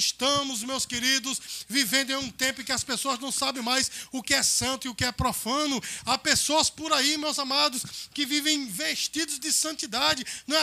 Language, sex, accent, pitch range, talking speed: Portuguese, male, Brazilian, 220-305 Hz, 205 wpm